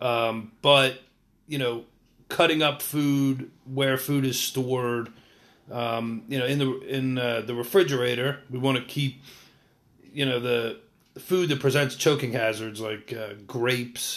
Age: 40-59